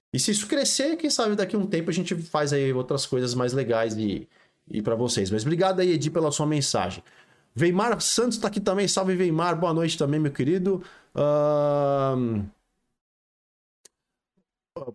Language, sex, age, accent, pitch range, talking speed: Portuguese, male, 20-39, Brazilian, 130-185 Hz, 170 wpm